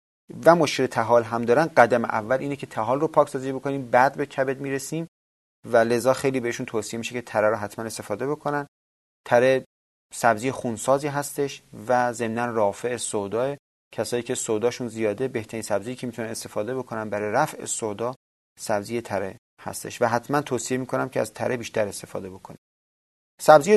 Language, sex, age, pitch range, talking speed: Persian, male, 30-49, 110-145 Hz, 160 wpm